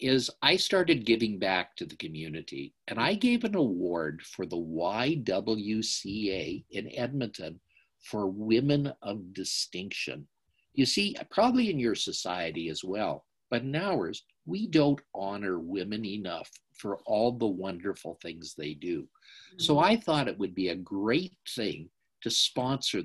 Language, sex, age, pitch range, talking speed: English, male, 50-69, 100-145 Hz, 145 wpm